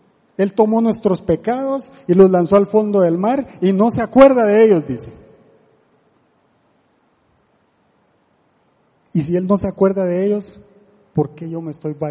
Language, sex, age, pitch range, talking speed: Spanish, male, 40-59, 160-220 Hz, 160 wpm